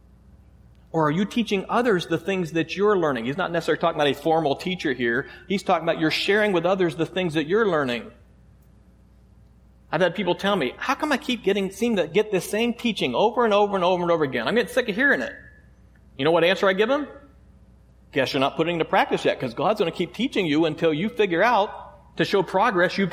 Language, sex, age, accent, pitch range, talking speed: English, male, 40-59, American, 170-250 Hz, 235 wpm